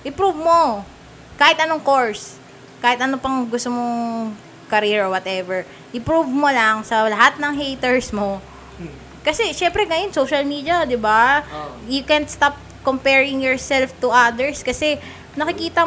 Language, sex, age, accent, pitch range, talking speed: Filipino, female, 20-39, native, 195-285 Hz, 140 wpm